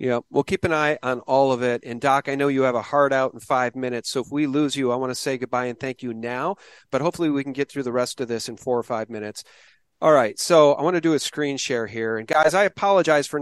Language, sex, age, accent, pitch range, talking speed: English, male, 40-59, American, 130-165 Hz, 295 wpm